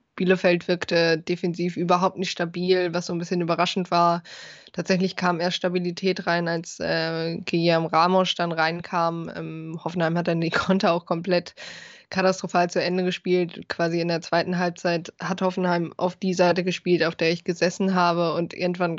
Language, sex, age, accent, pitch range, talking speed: German, female, 20-39, German, 170-185 Hz, 170 wpm